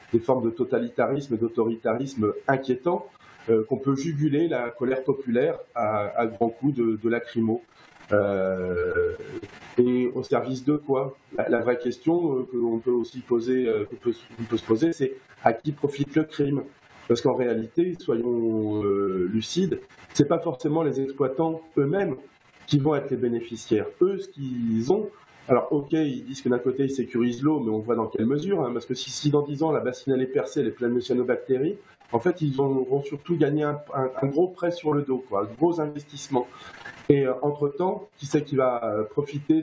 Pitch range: 120-150 Hz